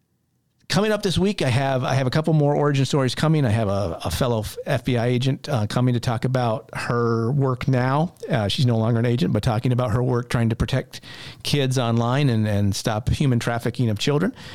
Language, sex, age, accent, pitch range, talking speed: English, male, 50-69, American, 115-150 Hz, 215 wpm